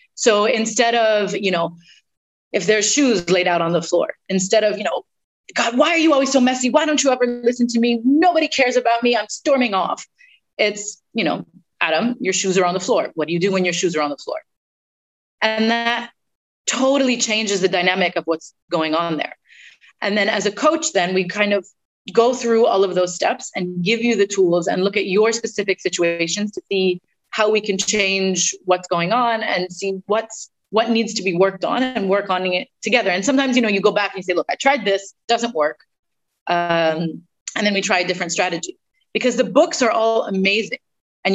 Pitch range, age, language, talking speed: 185-235 Hz, 30-49, English, 220 wpm